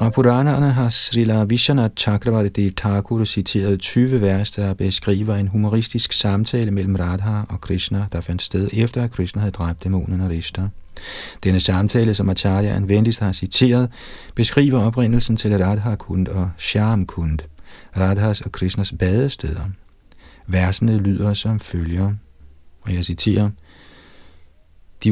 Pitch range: 95-110 Hz